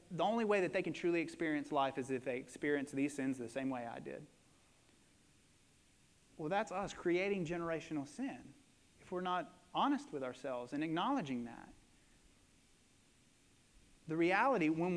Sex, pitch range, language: male, 170-230 Hz, English